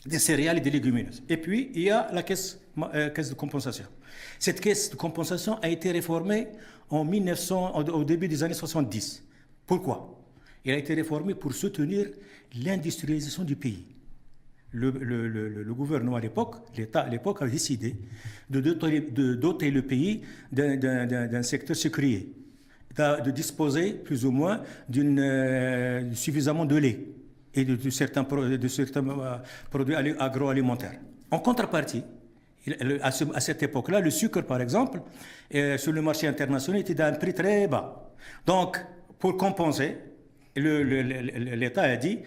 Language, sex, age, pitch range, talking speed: French, male, 60-79, 130-175 Hz, 170 wpm